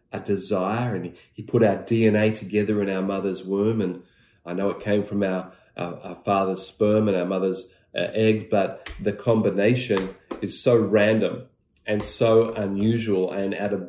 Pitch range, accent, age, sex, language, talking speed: 105-130 Hz, Australian, 40-59, male, English, 175 wpm